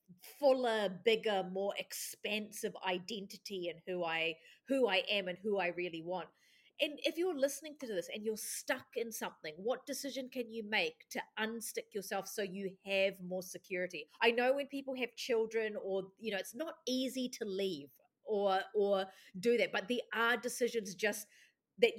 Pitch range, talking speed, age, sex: 185-240 Hz, 175 wpm, 40-59, female